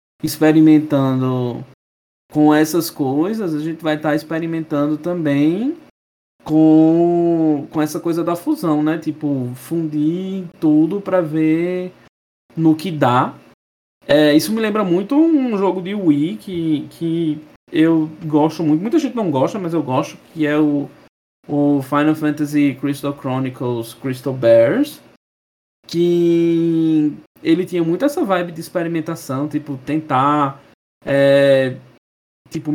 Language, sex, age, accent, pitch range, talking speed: Portuguese, male, 20-39, Brazilian, 140-160 Hz, 125 wpm